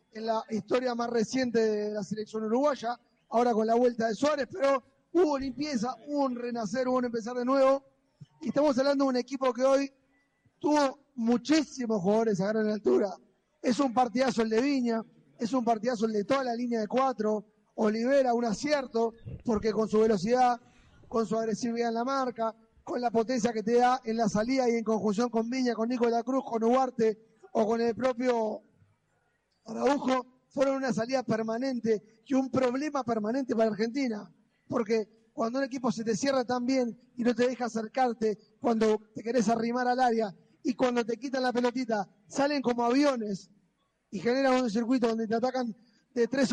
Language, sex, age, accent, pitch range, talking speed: Spanish, male, 20-39, Argentinian, 225-265 Hz, 180 wpm